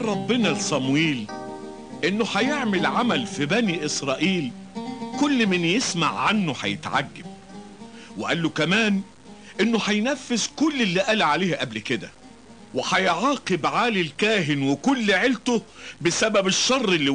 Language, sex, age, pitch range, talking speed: Italian, male, 50-69, 150-220 Hz, 110 wpm